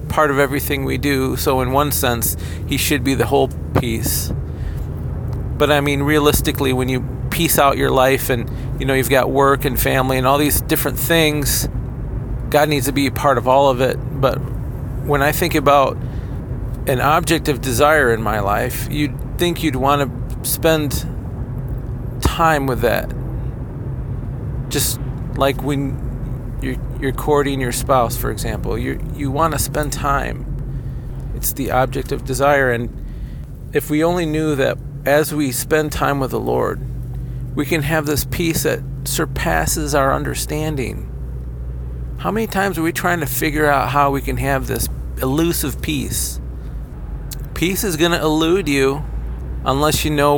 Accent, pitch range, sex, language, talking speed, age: American, 125-145 Hz, male, English, 165 wpm, 40-59